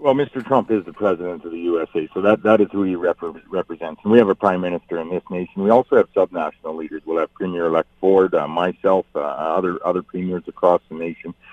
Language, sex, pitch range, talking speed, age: English, male, 85-95 Hz, 230 wpm, 50-69